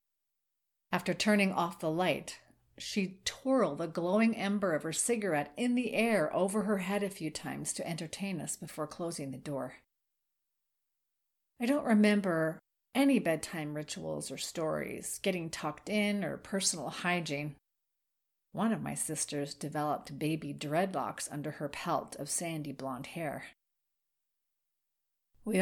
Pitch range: 160-215 Hz